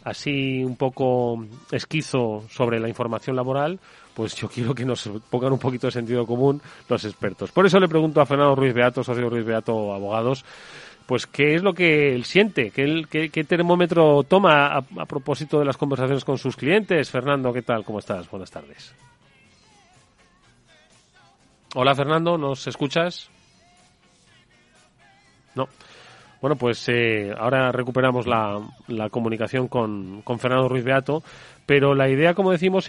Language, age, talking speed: Spanish, 30-49, 155 wpm